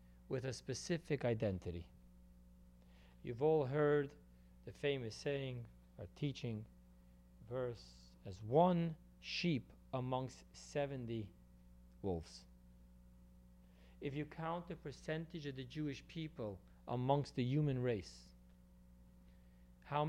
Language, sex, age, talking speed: English, male, 40-59, 100 wpm